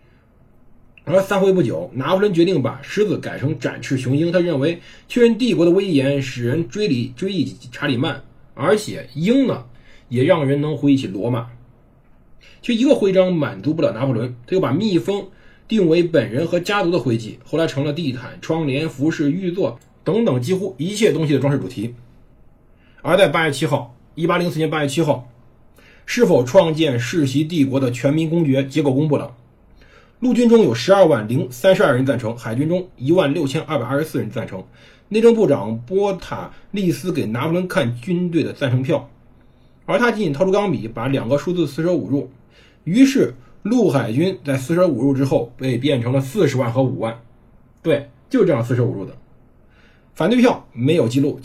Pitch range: 125-180 Hz